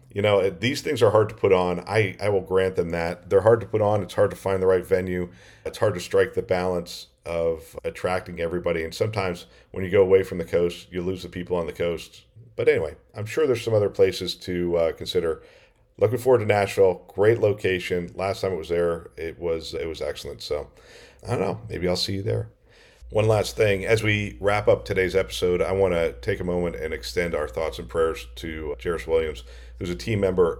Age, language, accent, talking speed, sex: 40-59, English, American, 230 wpm, male